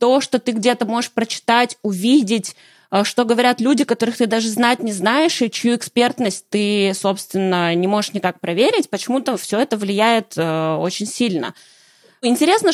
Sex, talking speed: female, 150 wpm